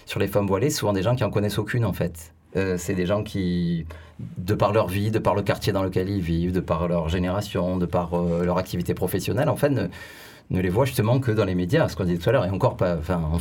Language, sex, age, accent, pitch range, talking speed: French, male, 30-49, French, 95-130 Hz, 280 wpm